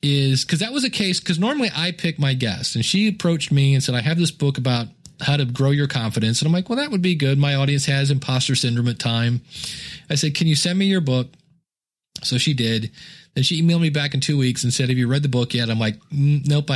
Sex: male